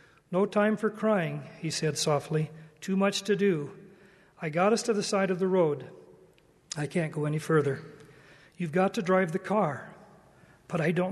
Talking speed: 185 wpm